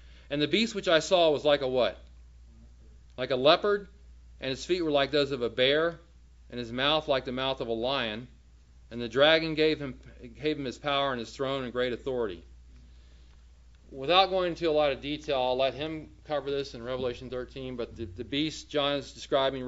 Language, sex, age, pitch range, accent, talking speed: English, male, 40-59, 110-155 Hz, American, 205 wpm